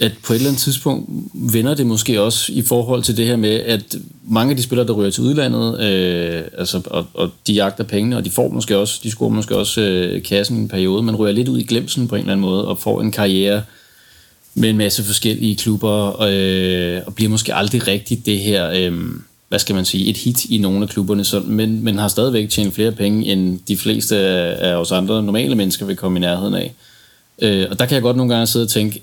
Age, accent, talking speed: 30-49, native, 240 wpm